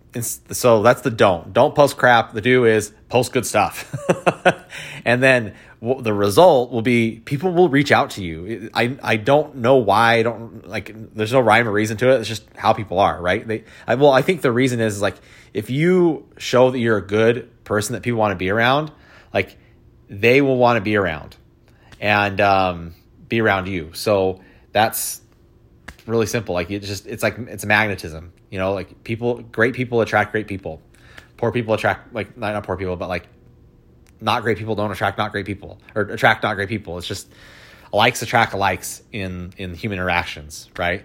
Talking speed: 195 wpm